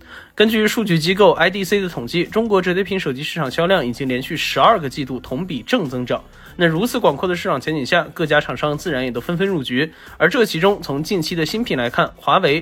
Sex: male